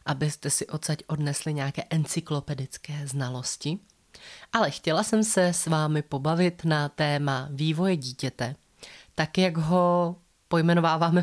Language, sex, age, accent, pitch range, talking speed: Czech, female, 30-49, native, 140-170 Hz, 120 wpm